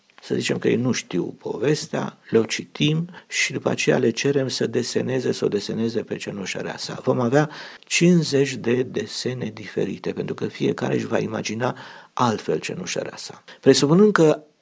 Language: Romanian